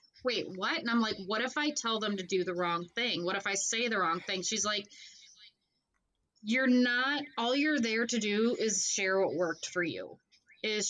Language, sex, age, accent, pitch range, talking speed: English, female, 20-39, American, 195-240 Hz, 210 wpm